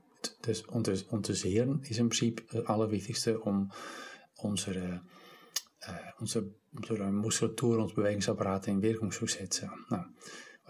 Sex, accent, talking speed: male, Dutch, 140 wpm